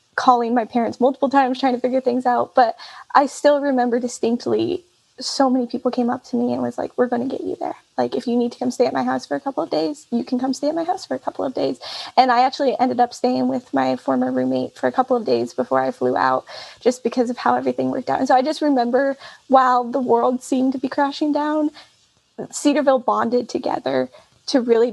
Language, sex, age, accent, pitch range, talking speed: English, female, 10-29, American, 230-275 Hz, 245 wpm